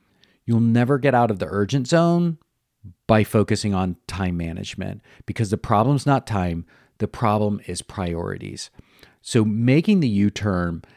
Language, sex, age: English, male, 40-59